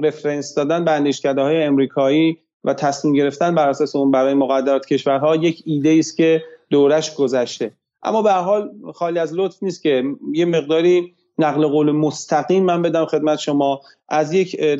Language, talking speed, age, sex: Persian, 160 wpm, 30-49, male